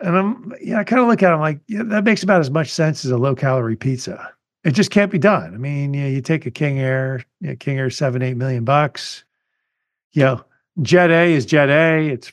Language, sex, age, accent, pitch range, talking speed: English, male, 50-69, American, 130-180 Hz, 270 wpm